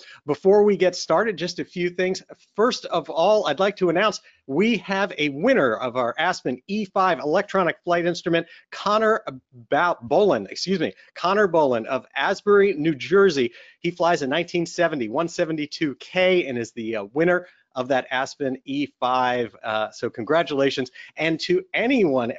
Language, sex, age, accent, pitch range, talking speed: English, male, 40-59, American, 135-185 Hz, 140 wpm